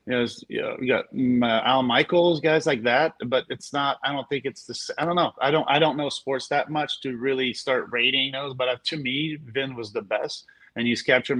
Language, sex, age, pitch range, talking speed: English, male, 30-49, 120-135 Hz, 220 wpm